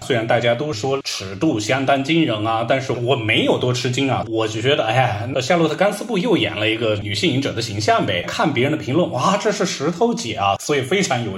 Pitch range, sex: 105-150 Hz, male